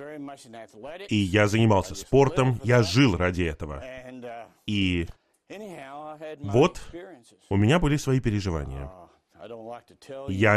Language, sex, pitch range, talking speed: Russian, male, 100-125 Hz, 90 wpm